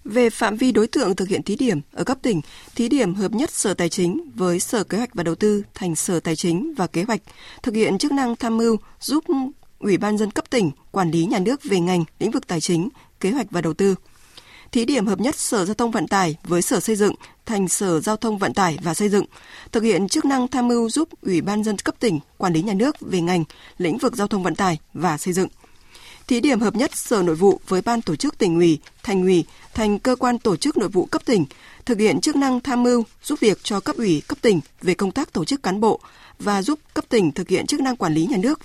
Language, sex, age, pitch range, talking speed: Vietnamese, female, 20-39, 180-255 Hz, 255 wpm